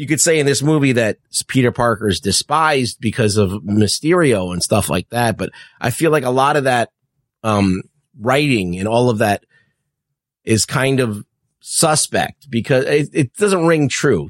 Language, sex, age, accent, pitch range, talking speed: English, male, 30-49, American, 115-155 Hz, 175 wpm